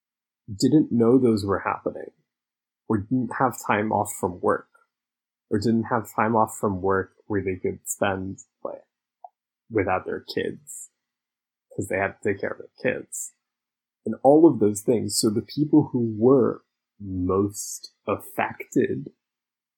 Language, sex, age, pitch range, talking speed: English, male, 20-39, 100-115 Hz, 145 wpm